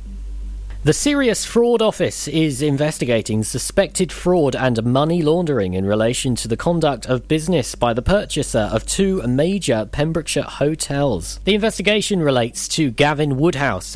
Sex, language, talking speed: male, English, 140 wpm